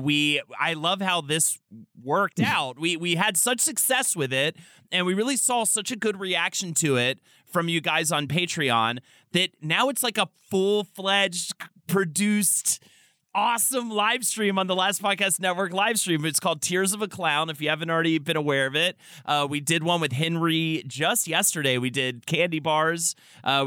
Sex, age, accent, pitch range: male, 30-49, American, 130-185 Hz